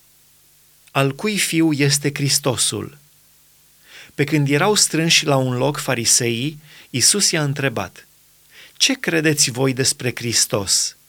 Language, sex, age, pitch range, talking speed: Romanian, male, 30-49, 120-155 Hz, 115 wpm